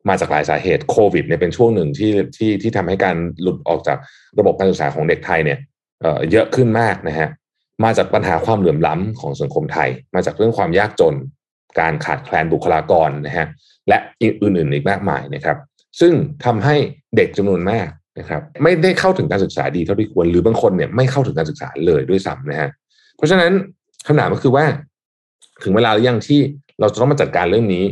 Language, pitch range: Thai, 90-145 Hz